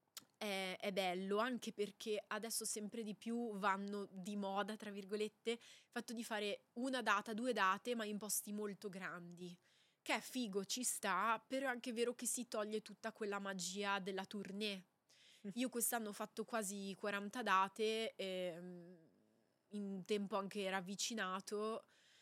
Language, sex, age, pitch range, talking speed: Italian, female, 20-39, 195-225 Hz, 145 wpm